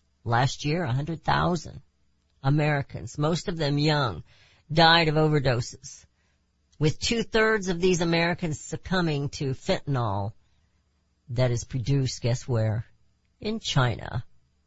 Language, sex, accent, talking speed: English, female, American, 120 wpm